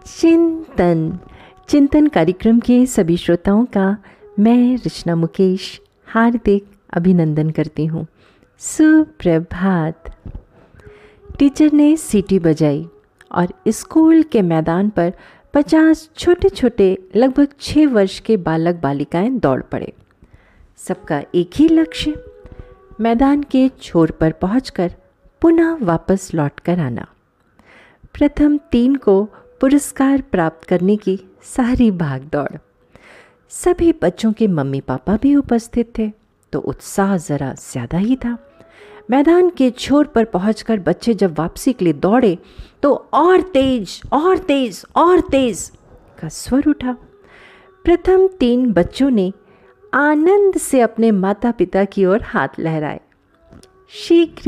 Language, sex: Hindi, female